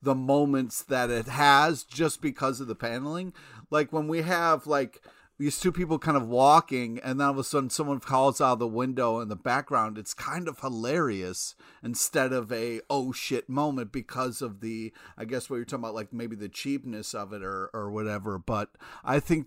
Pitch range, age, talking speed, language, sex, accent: 110-145 Hz, 40-59, 205 wpm, English, male, American